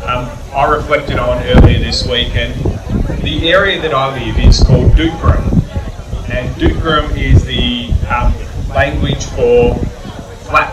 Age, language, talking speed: 30-49, Bengali, 130 wpm